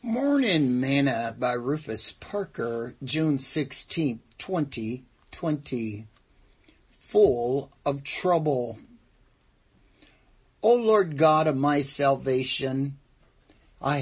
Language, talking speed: English, 75 wpm